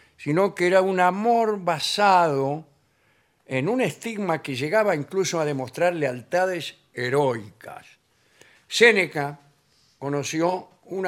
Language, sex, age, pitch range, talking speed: Spanish, male, 60-79, 130-175 Hz, 105 wpm